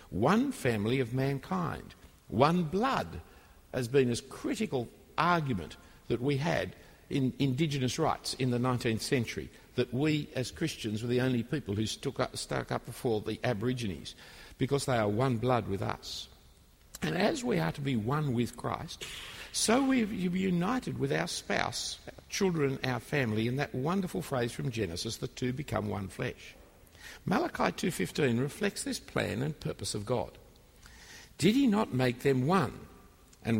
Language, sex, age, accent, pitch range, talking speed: English, male, 60-79, Australian, 110-155 Hz, 160 wpm